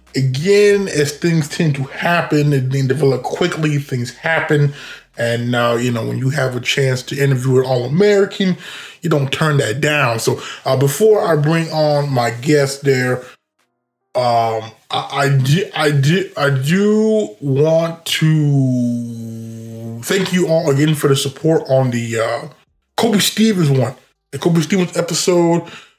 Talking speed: 150 wpm